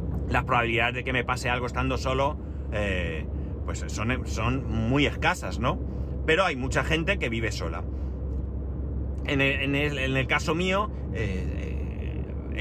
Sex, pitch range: male, 100-135 Hz